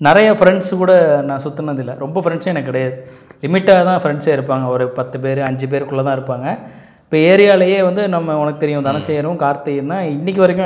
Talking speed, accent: 170 wpm, native